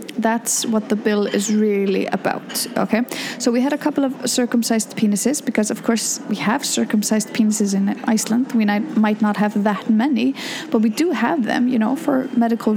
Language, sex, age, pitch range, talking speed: English, female, 30-49, 220-265 Hz, 190 wpm